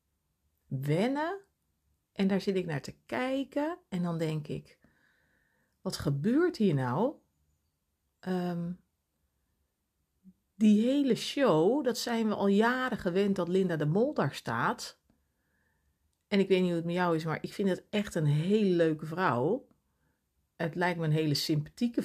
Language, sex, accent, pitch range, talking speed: Dutch, female, Dutch, 140-210 Hz, 150 wpm